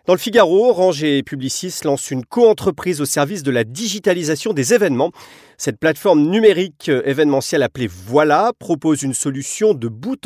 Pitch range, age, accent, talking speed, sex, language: 125-175 Hz, 40-59, French, 160 wpm, male, French